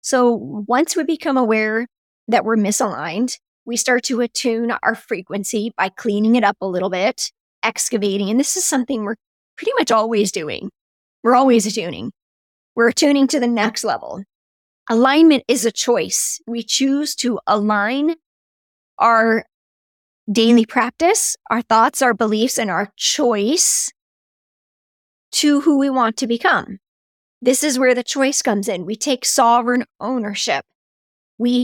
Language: English